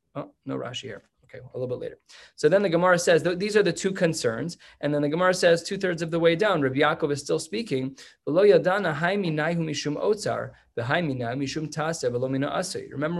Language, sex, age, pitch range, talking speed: English, male, 20-39, 135-170 Hz, 165 wpm